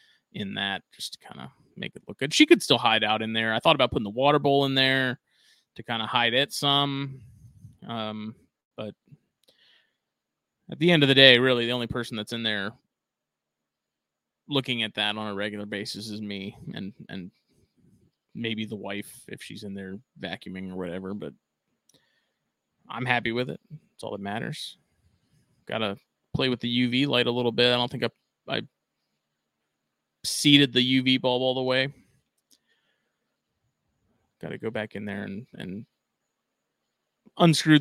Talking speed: 170 wpm